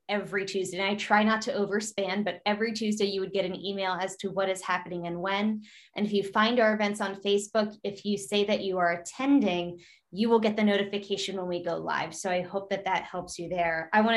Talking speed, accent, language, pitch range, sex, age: 240 wpm, American, English, 190-225 Hz, female, 20-39